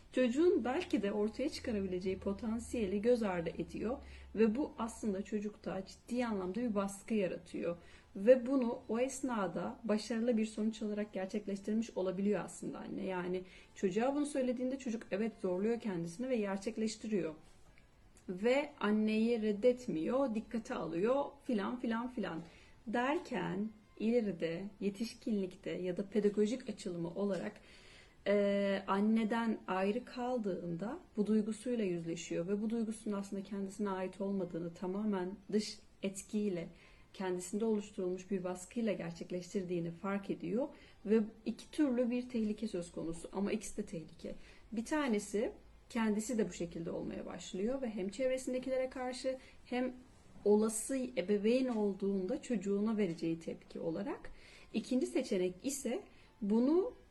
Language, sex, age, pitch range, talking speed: Turkish, female, 30-49, 190-245 Hz, 120 wpm